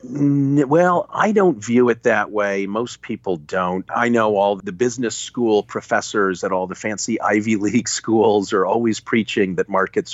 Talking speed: 170 wpm